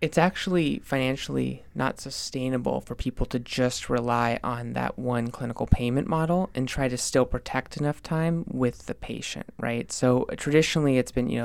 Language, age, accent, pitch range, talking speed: English, 20-39, American, 120-140 Hz, 170 wpm